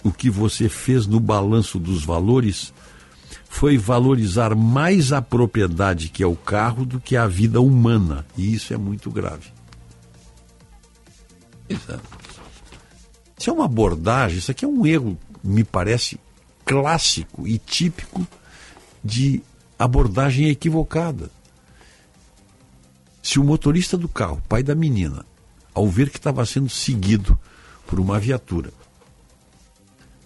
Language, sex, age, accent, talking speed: Portuguese, male, 60-79, Brazilian, 120 wpm